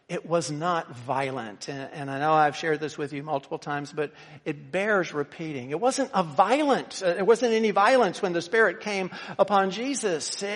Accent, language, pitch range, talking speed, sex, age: American, English, 155-200 Hz, 180 wpm, male, 50-69